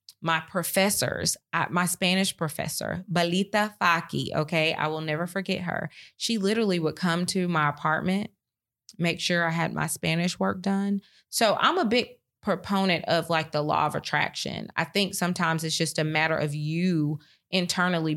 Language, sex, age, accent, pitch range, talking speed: English, female, 30-49, American, 160-190 Hz, 160 wpm